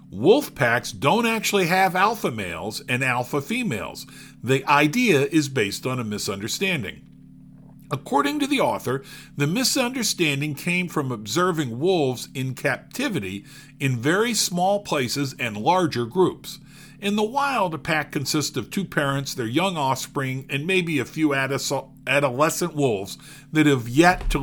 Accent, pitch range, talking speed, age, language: American, 135-190 Hz, 140 wpm, 50-69, English